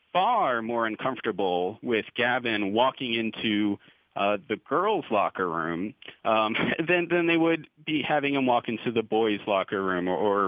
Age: 30-49